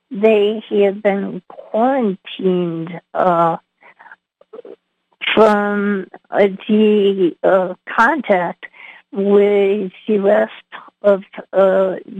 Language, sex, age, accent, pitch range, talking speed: English, female, 50-69, American, 190-215 Hz, 70 wpm